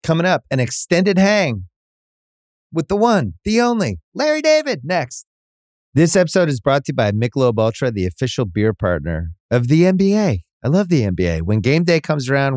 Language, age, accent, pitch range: English, 30-49, American, 100-155 Hz